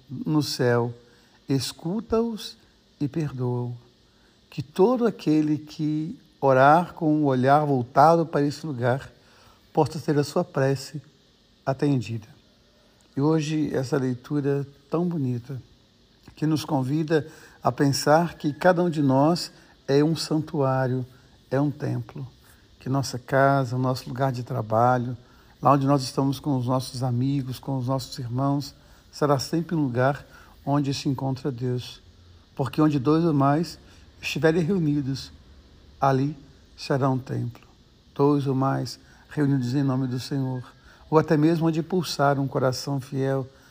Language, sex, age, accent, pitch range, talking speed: Portuguese, male, 60-79, Brazilian, 130-150 Hz, 140 wpm